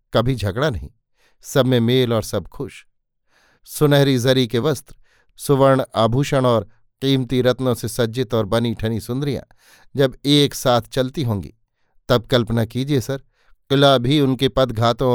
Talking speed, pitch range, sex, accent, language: 145 wpm, 115-140 Hz, male, native, Hindi